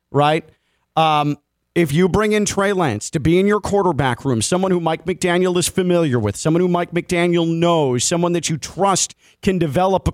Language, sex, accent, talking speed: English, male, American, 195 wpm